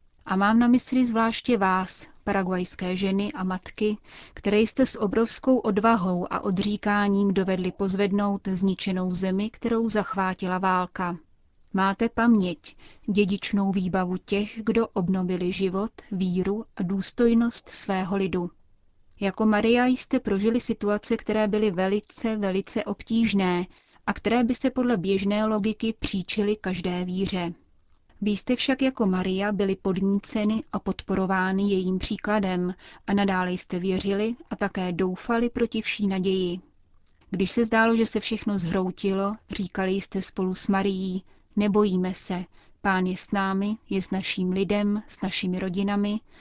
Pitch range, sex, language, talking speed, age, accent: 185-215 Hz, female, Czech, 135 wpm, 30-49, native